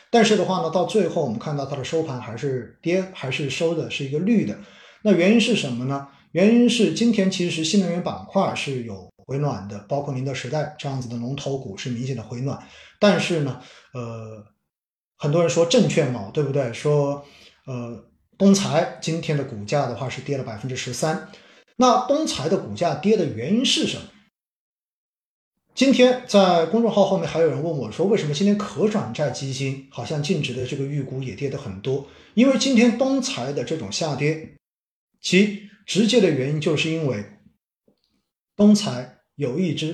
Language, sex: Chinese, male